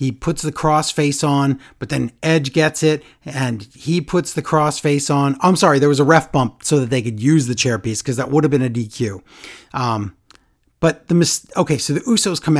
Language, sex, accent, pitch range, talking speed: English, male, American, 135-180 Hz, 230 wpm